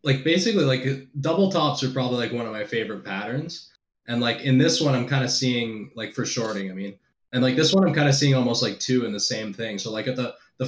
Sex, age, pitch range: male, 20-39, 110-130 Hz